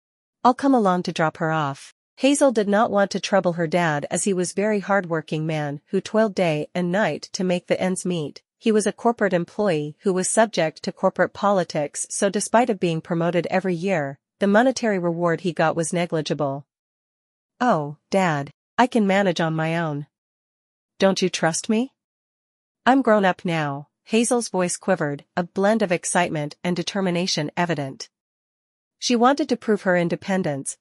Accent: American